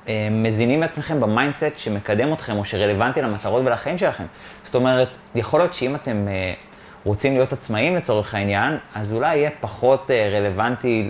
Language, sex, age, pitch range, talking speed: Hebrew, male, 30-49, 105-140 Hz, 140 wpm